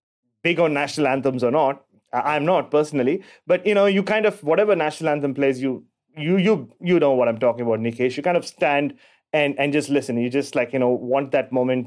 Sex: male